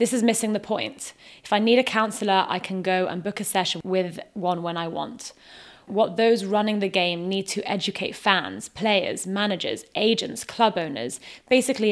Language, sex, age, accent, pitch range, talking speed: English, female, 20-39, British, 180-215 Hz, 185 wpm